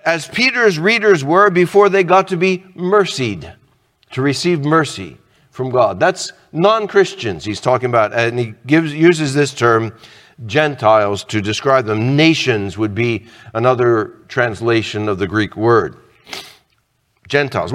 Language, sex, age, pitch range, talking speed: English, male, 50-69, 125-195 Hz, 130 wpm